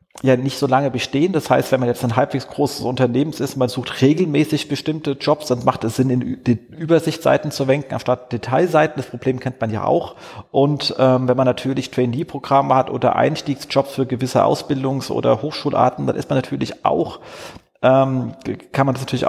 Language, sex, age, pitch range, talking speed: German, male, 30-49, 120-140 Hz, 190 wpm